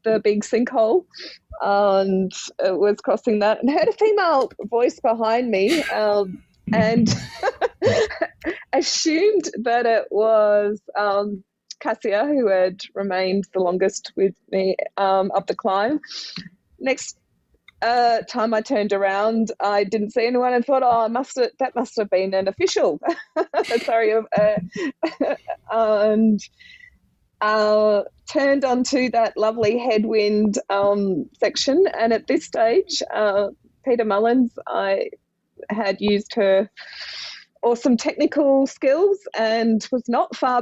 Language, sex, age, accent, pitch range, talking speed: English, female, 20-39, Australian, 200-260 Hz, 125 wpm